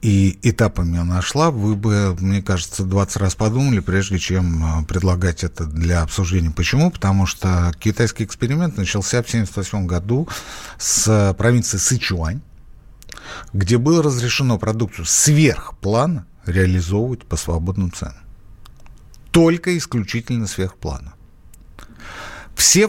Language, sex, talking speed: Russian, male, 110 wpm